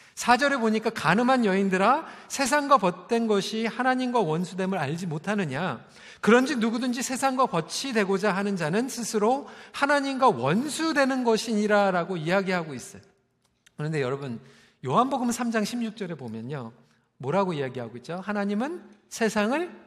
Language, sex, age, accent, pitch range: Korean, male, 40-59, native, 180-265 Hz